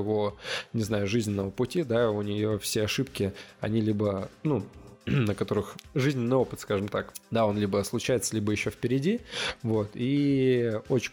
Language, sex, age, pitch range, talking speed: Russian, male, 20-39, 105-120 Hz, 155 wpm